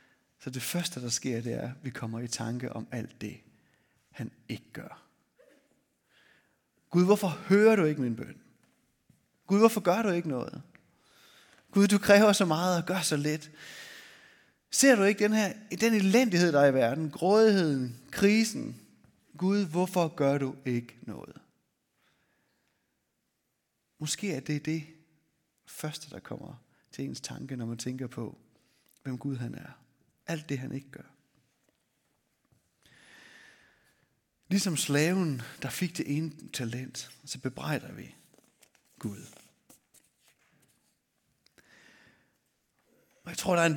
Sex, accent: male, native